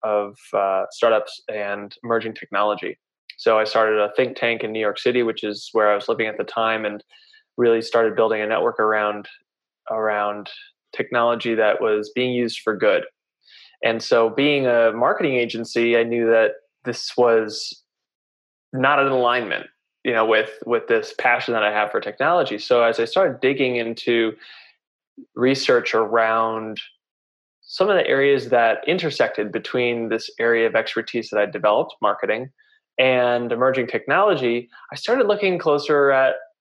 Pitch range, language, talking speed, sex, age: 110-125 Hz, English, 155 wpm, male, 20-39